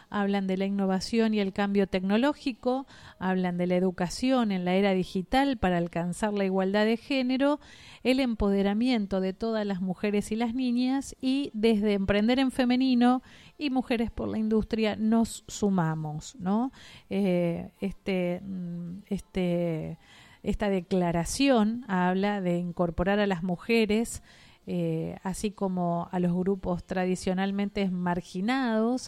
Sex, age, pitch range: female, 40-59, 180-230 Hz